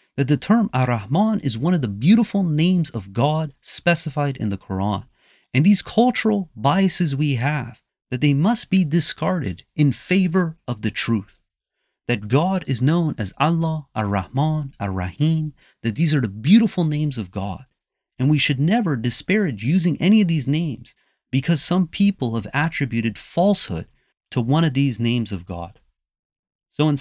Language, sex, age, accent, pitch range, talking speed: English, male, 30-49, American, 120-170 Hz, 165 wpm